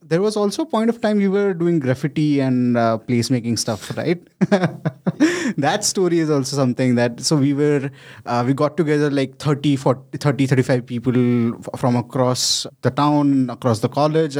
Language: English